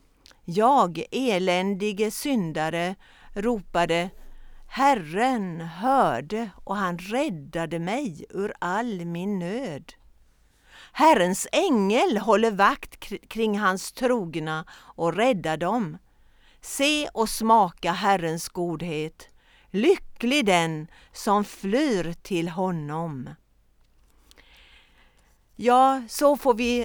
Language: Swedish